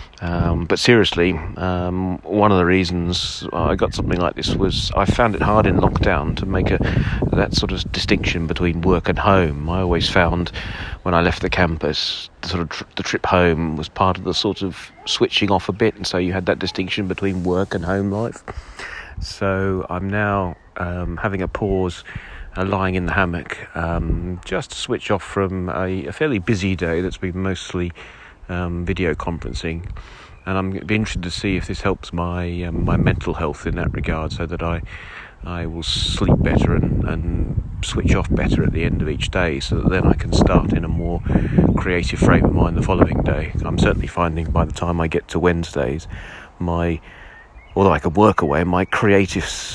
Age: 40-59